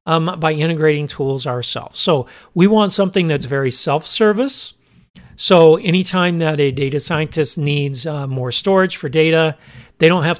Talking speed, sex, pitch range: 155 wpm, male, 145-175 Hz